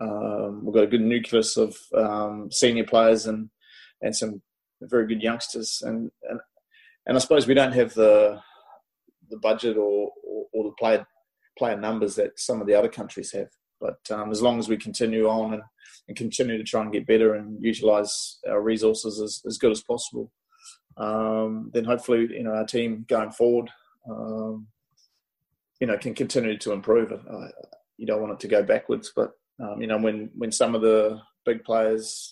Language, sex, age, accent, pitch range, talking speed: English, male, 20-39, Australian, 110-120 Hz, 190 wpm